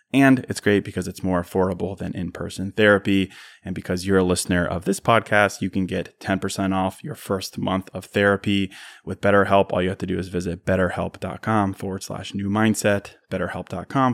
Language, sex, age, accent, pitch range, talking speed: English, male, 20-39, American, 95-110 Hz, 180 wpm